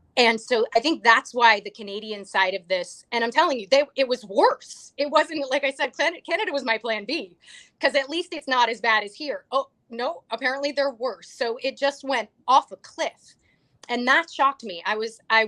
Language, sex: English, female